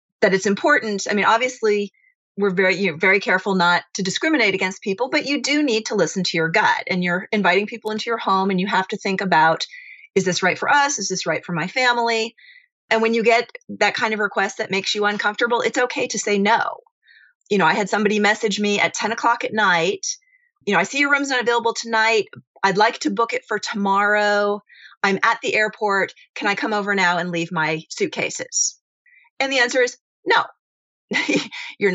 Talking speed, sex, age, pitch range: 210 wpm, female, 30-49, 190-245 Hz